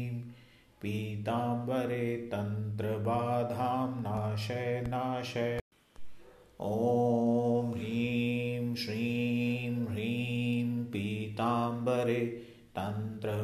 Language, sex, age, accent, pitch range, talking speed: Hindi, male, 30-49, native, 115-120 Hz, 65 wpm